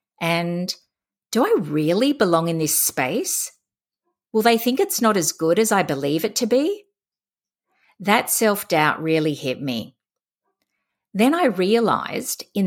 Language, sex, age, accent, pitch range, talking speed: English, female, 50-69, Australian, 165-235 Hz, 140 wpm